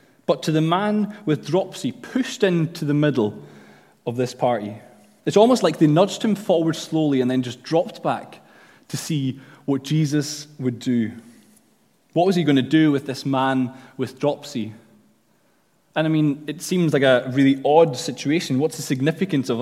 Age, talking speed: 20-39, 175 wpm